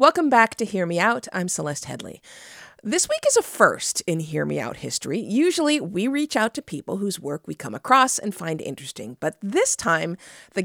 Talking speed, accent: 210 wpm, American